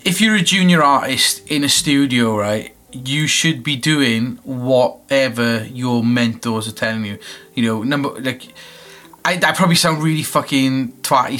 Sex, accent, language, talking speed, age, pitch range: male, British, English, 160 wpm, 30-49, 120-155 Hz